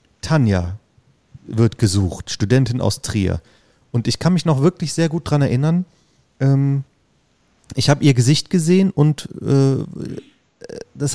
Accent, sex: German, male